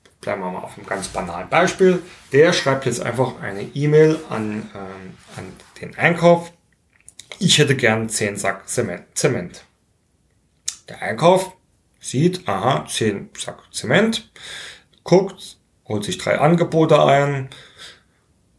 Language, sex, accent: German, male, German